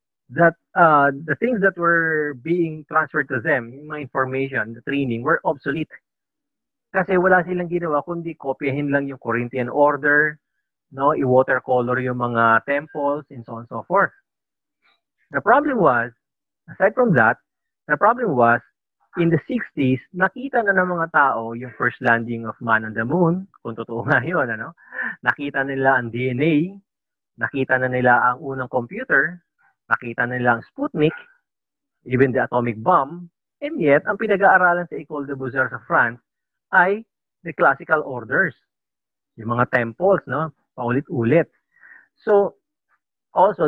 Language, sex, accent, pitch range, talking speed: English, male, Filipino, 125-170 Hz, 150 wpm